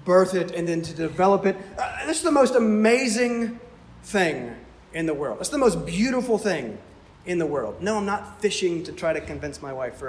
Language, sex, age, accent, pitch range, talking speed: English, male, 30-49, American, 185-250 Hz, 215 wpm